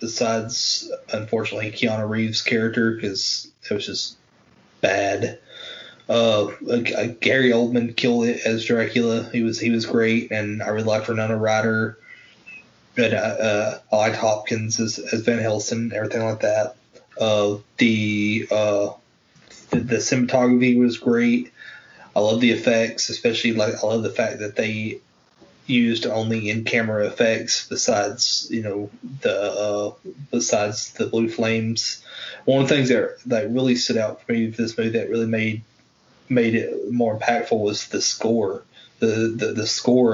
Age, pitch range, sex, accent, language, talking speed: 20-39, 110-120 Hz, male, American, English, 155 wpm